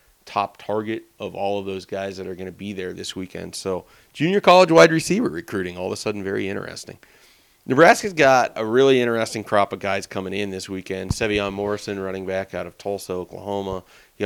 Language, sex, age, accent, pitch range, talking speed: English, male, 30-49, American, 95-110 Hz, 200 wpm